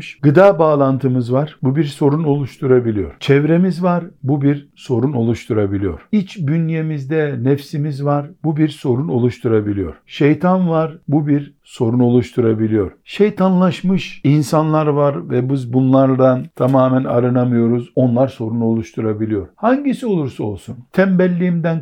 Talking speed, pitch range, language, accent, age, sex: 115 wpm, 115-155 Hz, Turkish, native, 60-79, male